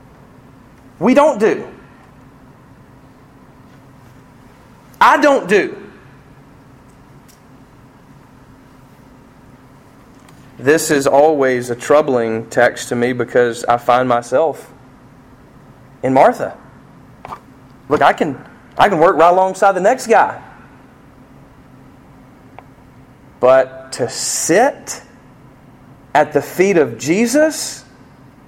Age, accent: 40-59, American